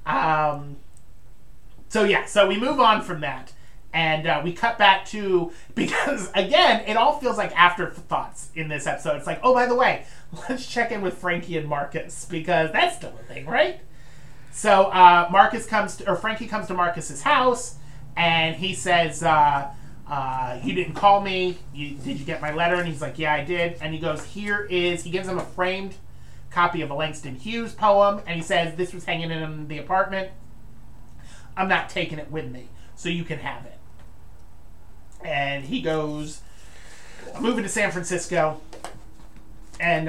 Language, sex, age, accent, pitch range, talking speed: English, male, 30-49, American, 140-185 Hz, 185 wpm